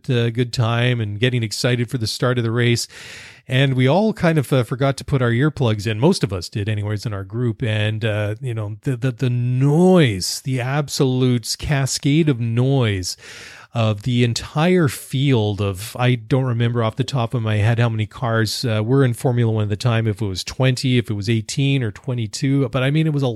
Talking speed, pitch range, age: 225 wpm, 115-140 Hz, 30-49